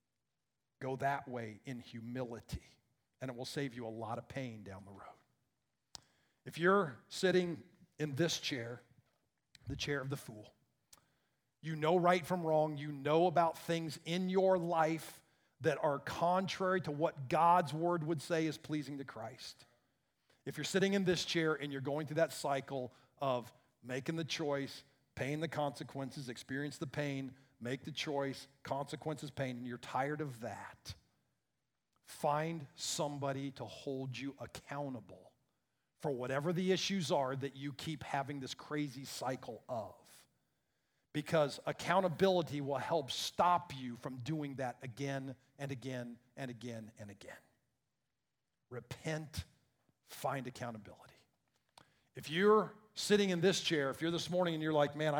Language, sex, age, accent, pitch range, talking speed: English, male, 50-69, American, 130-160 Hz, 150 wpm